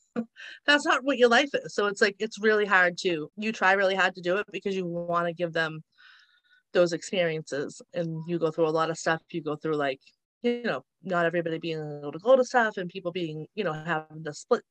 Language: English